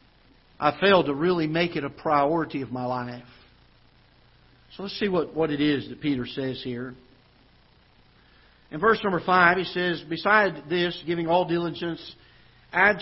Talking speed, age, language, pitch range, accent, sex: 155 wpm, 50-69, English, 150-215 Hz, American, male